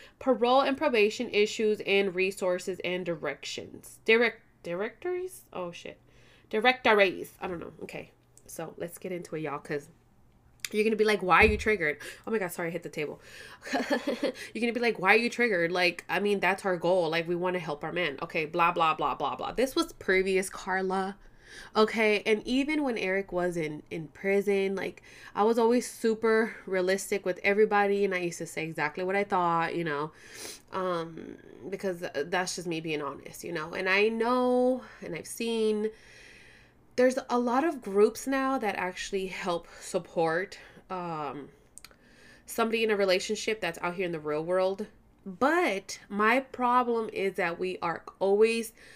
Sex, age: female, 20-39